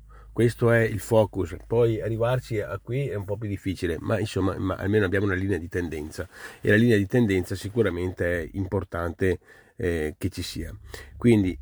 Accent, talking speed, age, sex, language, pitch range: native, 180 wpm, 40-59, male, Italian, 90-110 Hz